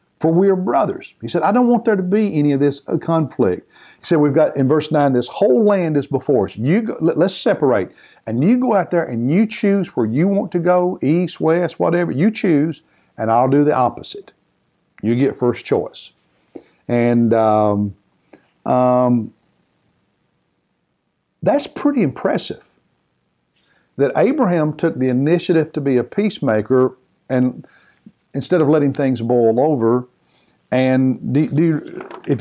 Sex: male